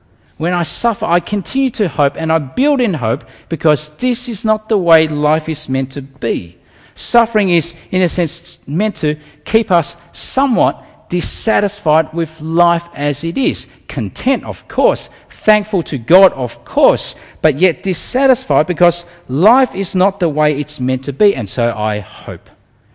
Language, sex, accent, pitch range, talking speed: English, male, Australian, 125-200 Hz, 165 wpm